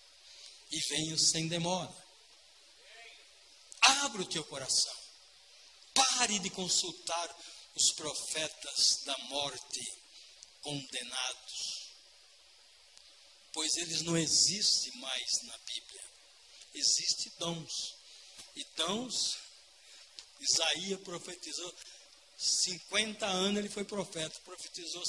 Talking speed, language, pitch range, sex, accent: 85 wpm, Portuguese, 170-240 Hz, male, Brazilian